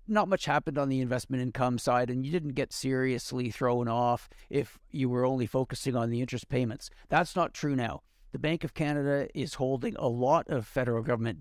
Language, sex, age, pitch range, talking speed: English, male, 50-69, 125-145 Hz, 205 wpm